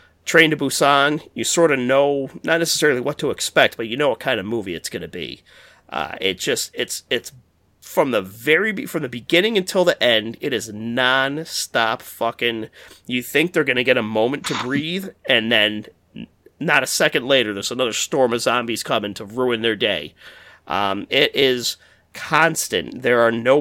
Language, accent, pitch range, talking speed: English, American, 115-145 Hz, 190 wpm